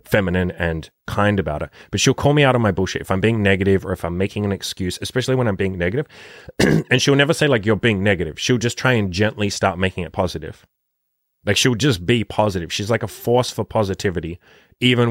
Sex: male